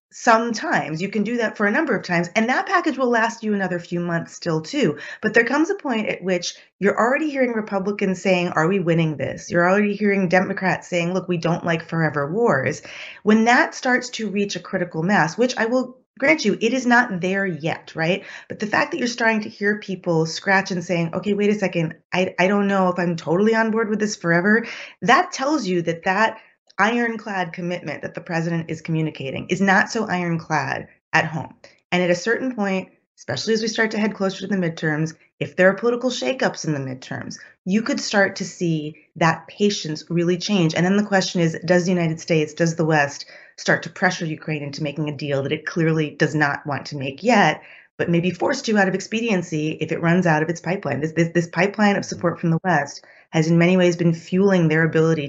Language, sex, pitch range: English, female, 165-210 Hz